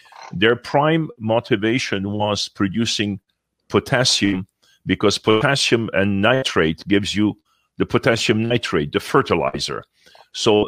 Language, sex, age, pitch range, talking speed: English, male, 50-69, 95-115 Hz, 100 wpm